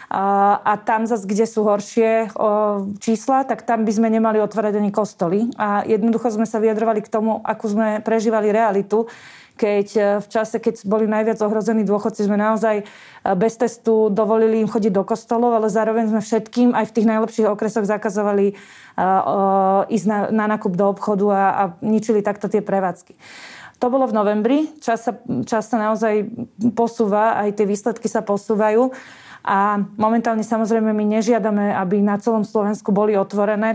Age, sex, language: 20-39, female, Slovak